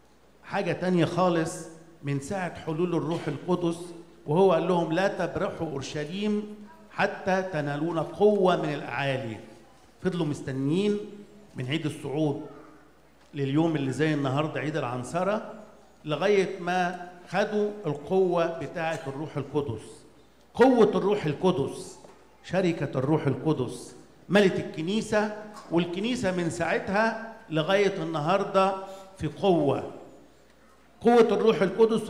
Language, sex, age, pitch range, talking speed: English, male, 50-69, 150-190 Hz, 100 wpm